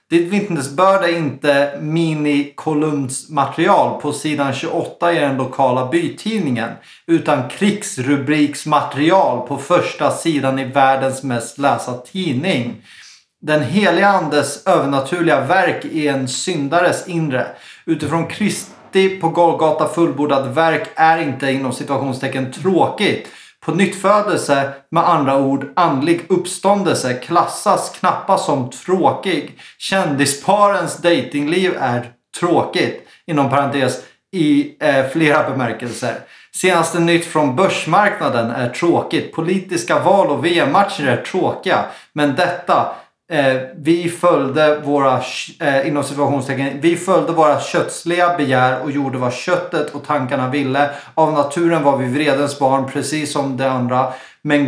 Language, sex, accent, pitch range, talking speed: English, male, Swedish, 135-175 Hz, 115 wpm